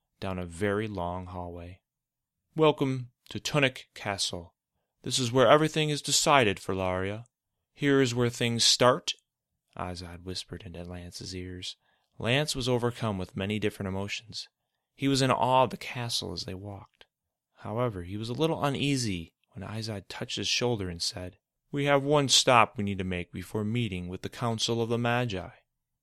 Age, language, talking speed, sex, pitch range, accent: 30-49, English, 170 wpm, male, 95-130 Hz, American